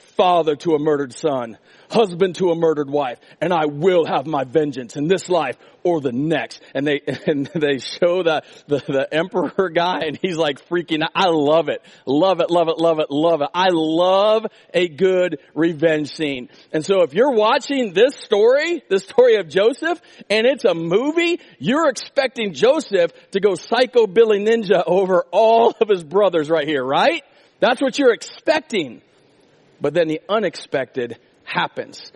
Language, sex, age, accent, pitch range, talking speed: English, male, 40-59, American, 165-255 Hz, 175 wpm